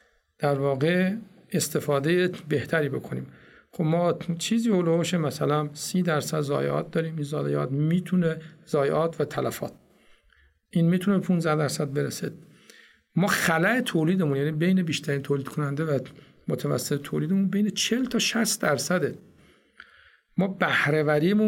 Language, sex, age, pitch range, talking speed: Persian, male, 50-69, 145-185 Hz, 120 wpm